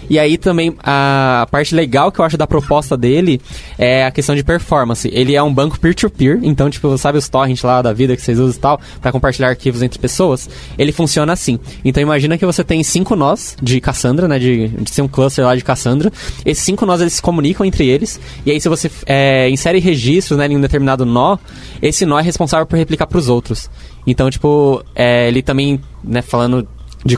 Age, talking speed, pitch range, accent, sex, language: 20-39, 220 wpm, 125-155 Hz, Brazilian, male, Portuguese